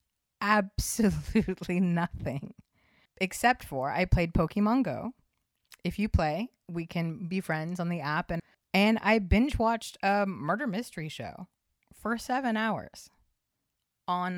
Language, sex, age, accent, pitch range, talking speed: English, female, 30-49, American, 155-200 Hz, 130 wpm